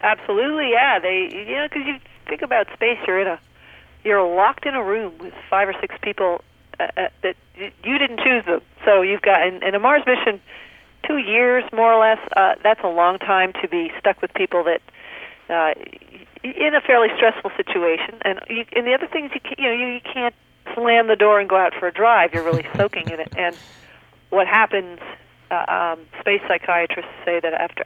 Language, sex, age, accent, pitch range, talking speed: English, female, 50-69, American, 175-240 Hz, 210 wpm